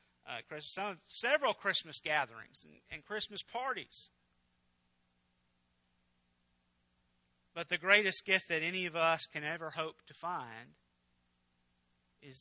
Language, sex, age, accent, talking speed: English, male, 40-59, American, 115 wpm